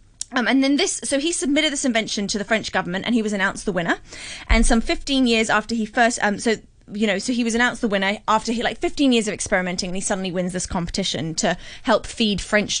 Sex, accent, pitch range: female, British, 200-260 Hz